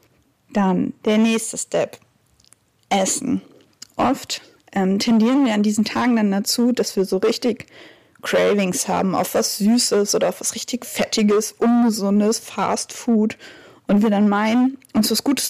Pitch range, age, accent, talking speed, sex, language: 205-255 Hz, 20-39, German, 145 wpm, female, German